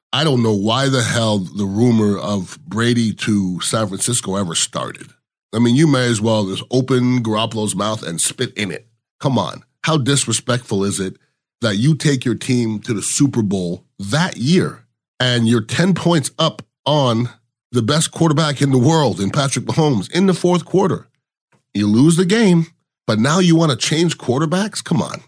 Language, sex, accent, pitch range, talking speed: English, male, American, 110-145 Hz, 185 wpm